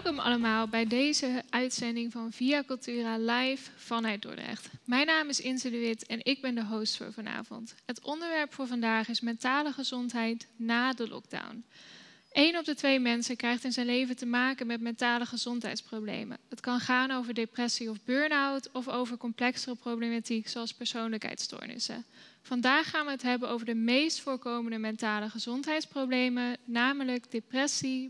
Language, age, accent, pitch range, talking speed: Dutch, 10-29, Dutch, 230-260 Hz, 160 wpm